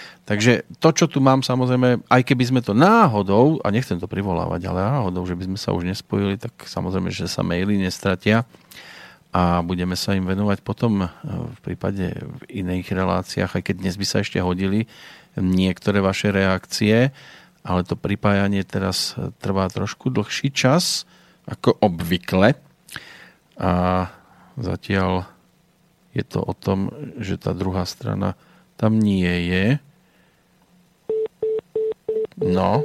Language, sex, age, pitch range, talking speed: Slovak, male, 40-59, 95-125 Hz, 135 wpm